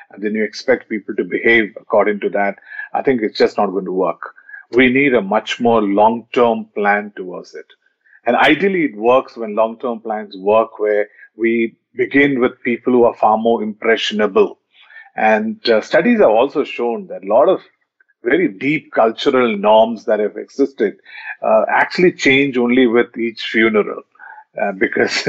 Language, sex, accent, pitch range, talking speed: English, male, Indian, 110-140 Hz, 170 wpm